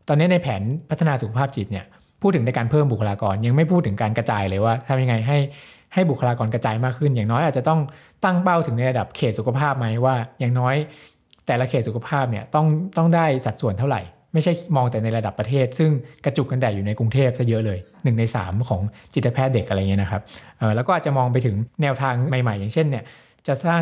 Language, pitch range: Thai, 115-150 Hz